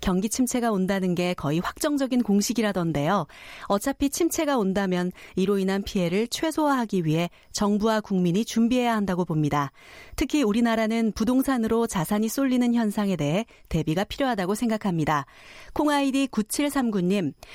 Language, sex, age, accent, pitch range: Korean, female, 40-59, native, 185-235 Hz